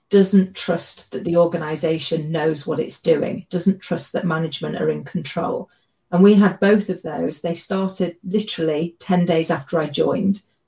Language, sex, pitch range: English, female, 170-200 Hz